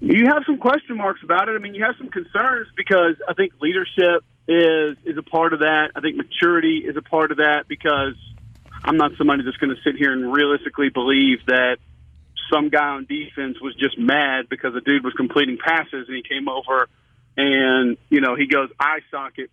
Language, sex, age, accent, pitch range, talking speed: English, male, 40-59, American, 140-185 Hz, 205 wpm